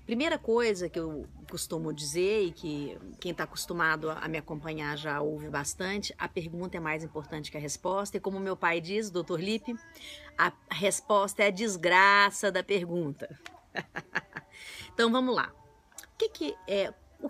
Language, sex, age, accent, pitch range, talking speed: Portuguese, female, 40-59, Brazilian, 160-225 Hz, 150 wpm